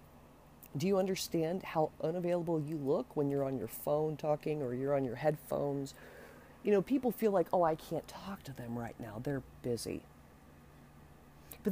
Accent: American